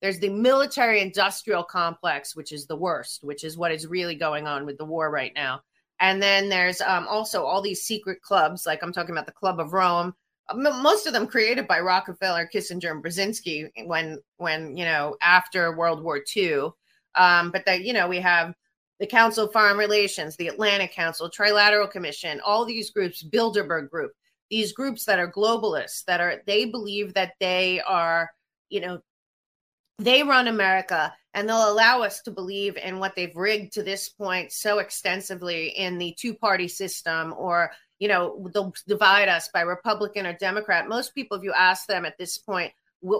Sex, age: female, 30-49